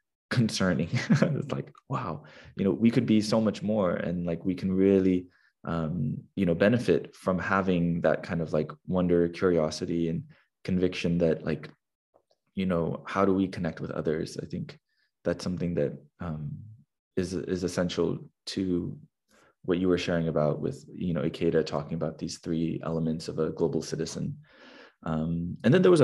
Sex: male